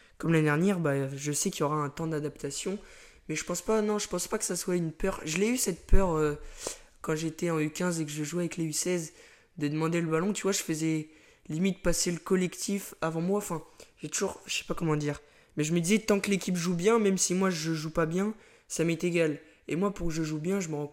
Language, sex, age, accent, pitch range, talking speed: French, male, 20-39, French, 155-185 Hz, 265 wpm